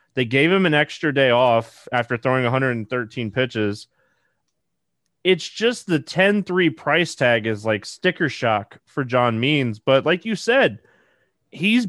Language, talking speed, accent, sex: English, 150 wpm, American, male